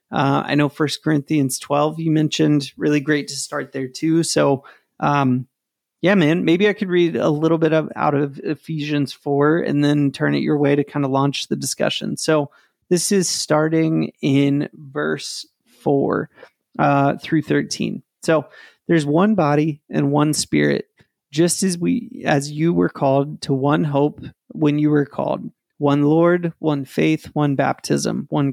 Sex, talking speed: male, 170 wpm